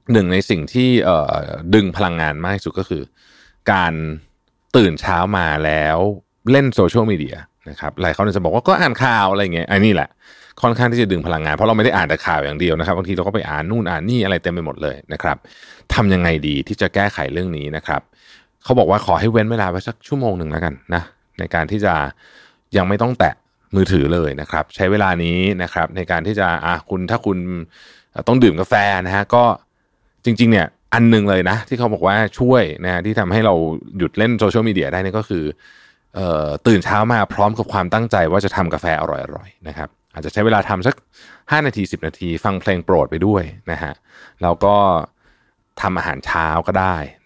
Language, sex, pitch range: Thai, male, 85-110 Hz